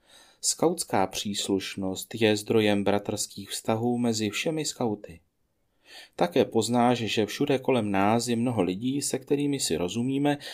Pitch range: 100-130 Hz